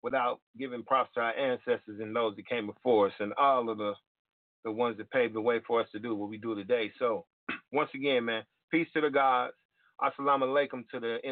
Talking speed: 225 wpm